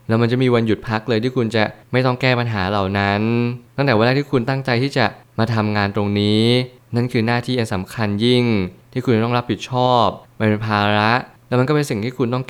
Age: 20-39